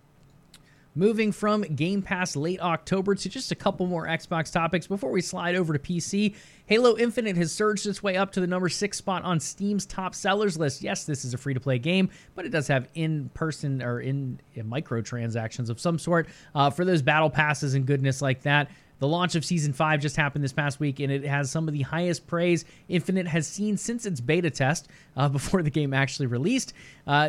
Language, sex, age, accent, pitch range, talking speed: English, male, 20-39, American, 135-180 Hz, 205 wpm